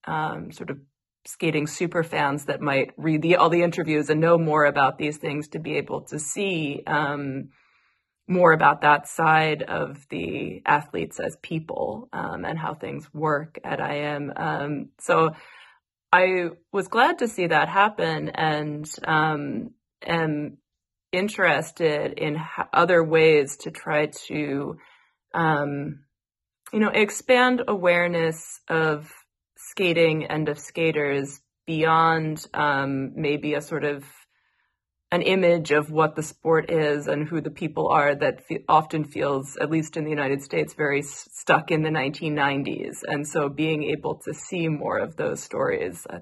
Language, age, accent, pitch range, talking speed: English, 20-39, American, 150-175 Hz, 150 wpm